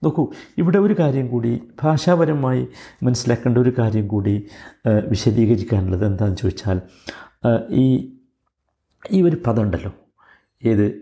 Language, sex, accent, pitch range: Malayalam, male, native, 105-155 Hz